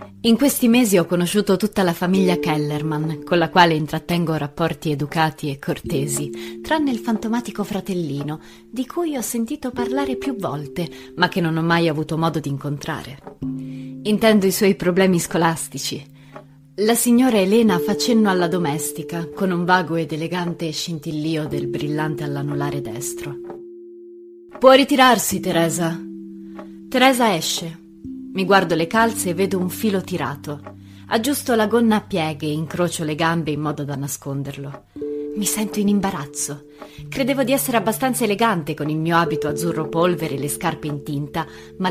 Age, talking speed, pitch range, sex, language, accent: 30-49, 150 wpm, 145-200 Hz, female, Italian, native